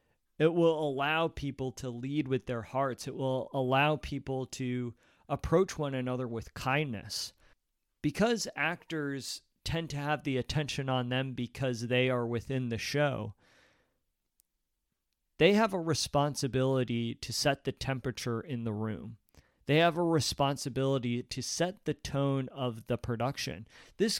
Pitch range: 120-150 Hz